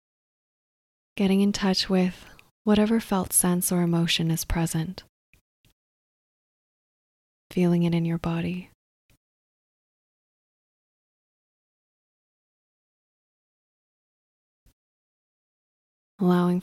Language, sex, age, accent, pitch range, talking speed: English, female, 20-39, American, 175-190 Hz, 60 wpm